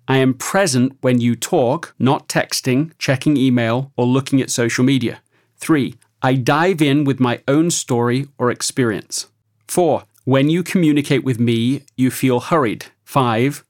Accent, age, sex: British, 40-59, male